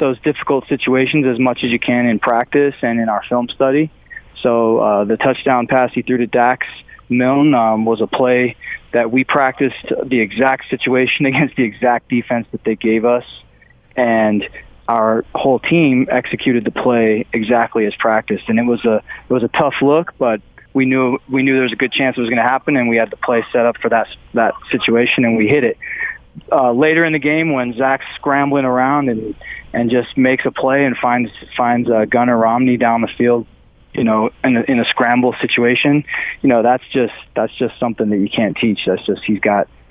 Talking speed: 210 wpm